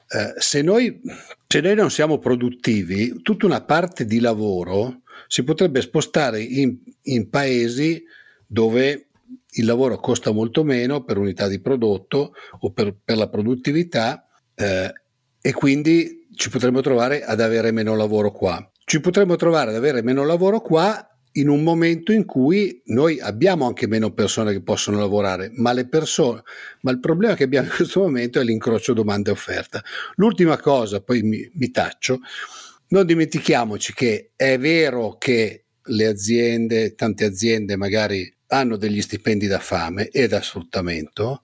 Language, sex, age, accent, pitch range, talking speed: Italian, male, 50-69, native, 110-155 Hz, 155 wpm